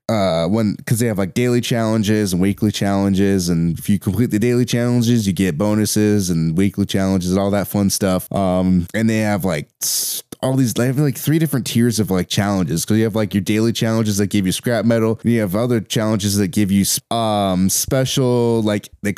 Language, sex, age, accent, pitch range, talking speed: English, male, 20-39, American, 100-120 Hz, 215 wpm